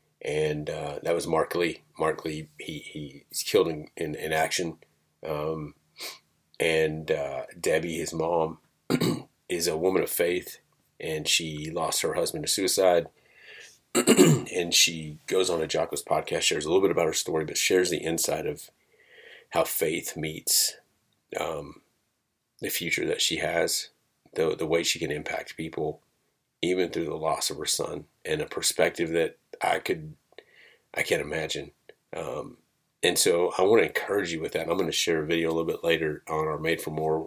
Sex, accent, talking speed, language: male, American, 175 wpm, English